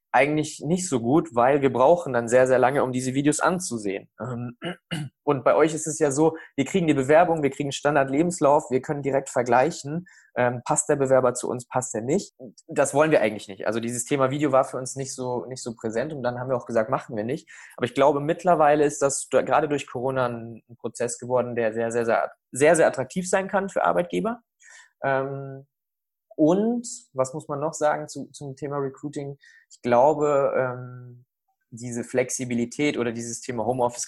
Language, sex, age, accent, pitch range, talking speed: German, male, 20-39, German, 115-145 Hz, 195 wpm